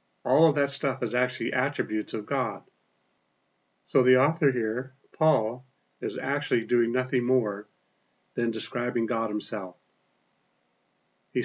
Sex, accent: male, American